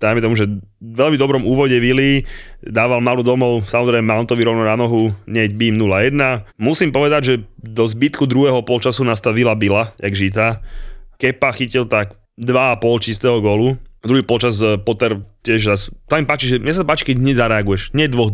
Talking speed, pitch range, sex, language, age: 170 wpm, 110-125 Hz, male, Slovak, 20-39